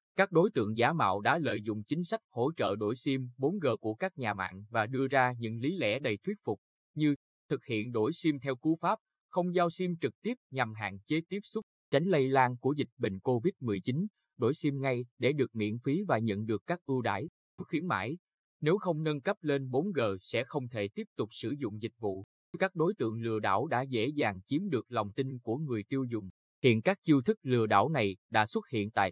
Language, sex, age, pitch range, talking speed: Vietnamese, male, 20-39, 110-155 Hz, 225 wpm